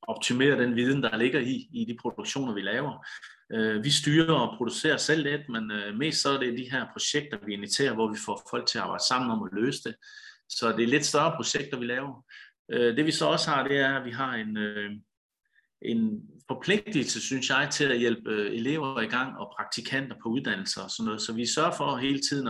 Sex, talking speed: male, 215 wpm